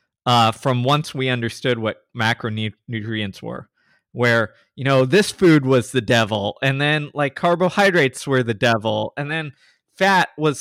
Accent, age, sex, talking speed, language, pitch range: American, 20-39, male, 155 wpm, English, 115-145 Hz